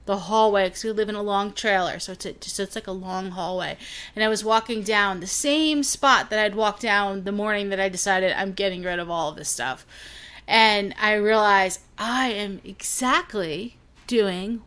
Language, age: English, 30-49